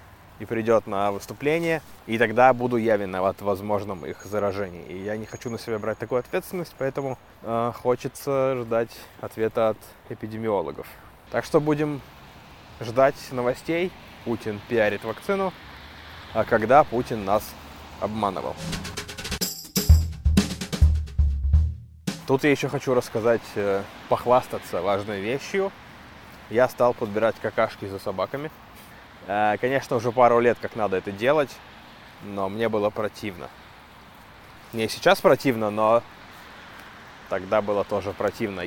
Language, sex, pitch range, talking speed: Russian, male, 100-130 Hz, 120 wpm